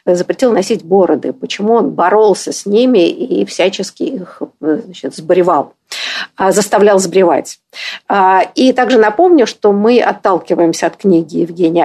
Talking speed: 115 wpm